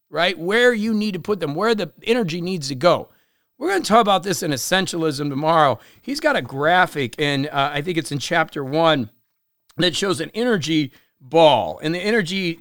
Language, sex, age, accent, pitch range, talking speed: English, male, 40-59, American, 150-215 Hz, 200 wpm